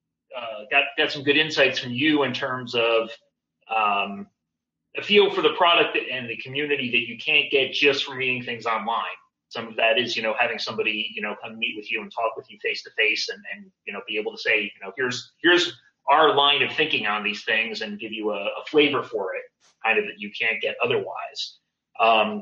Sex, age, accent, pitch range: male, 30-49, American, 115-155 Hz